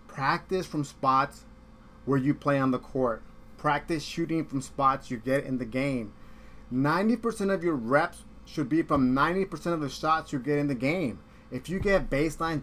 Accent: American